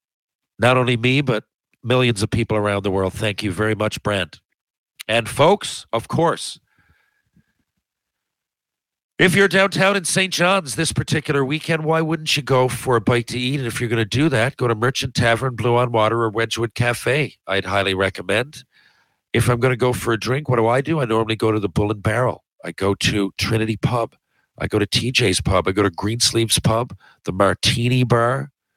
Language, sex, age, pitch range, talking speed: English, male, 50-69, 110-140 Hz, 200 wpm